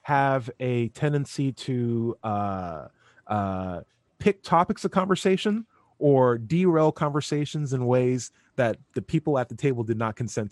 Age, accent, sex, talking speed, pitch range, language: 20-39, American, male, 135 wpm, 120-165 Hz, English